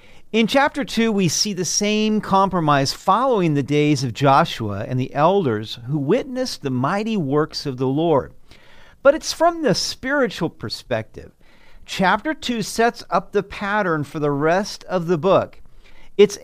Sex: male